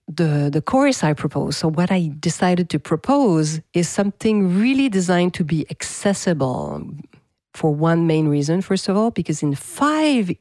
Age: 40-59